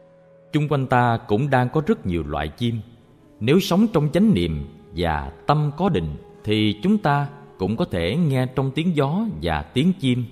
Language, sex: Vietnamese, male